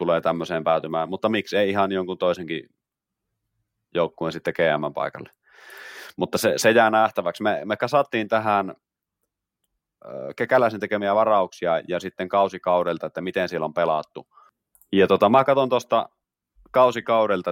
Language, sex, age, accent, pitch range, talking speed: Finnish, male, 30-49, native, 80-110 Hz, 135 wpm